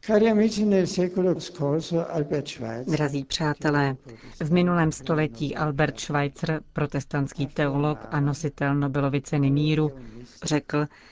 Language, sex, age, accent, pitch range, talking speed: Czech, female, 40-59, native, 140-160 Hz, 75 wpm